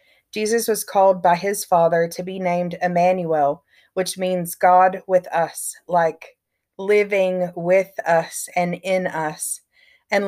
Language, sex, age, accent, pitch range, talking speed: English, female, 30-49, American, 170-195 Hz, 135 wpm